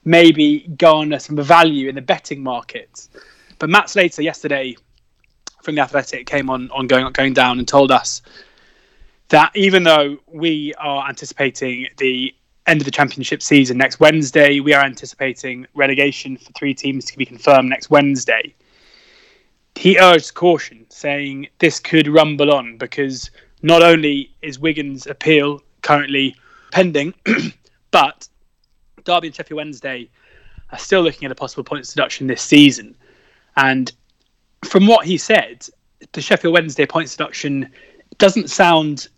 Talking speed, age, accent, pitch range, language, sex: 140 wpm, 20-39, British, 135-165 Hz, English, male